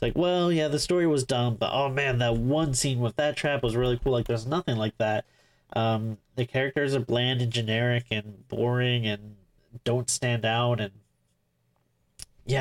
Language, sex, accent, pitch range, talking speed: English, male, American, 110-140 Hz, 185 wpm